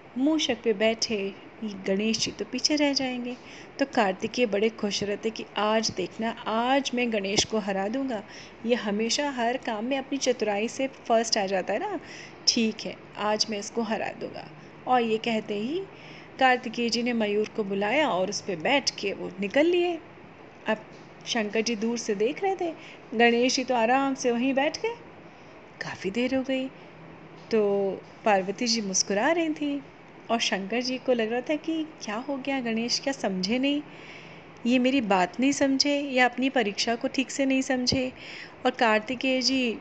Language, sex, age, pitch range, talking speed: Hindi, female, 30-49, 220-270 Hz, 180 wpm